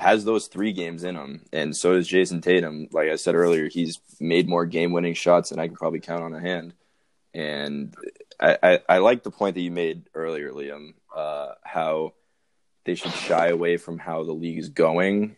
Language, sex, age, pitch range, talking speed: English, male, 20-39, 80-95 Hz, 205 wpm